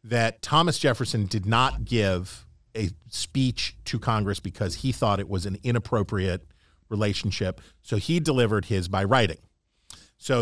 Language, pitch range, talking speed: English, 100-130 Hz, 145 wpm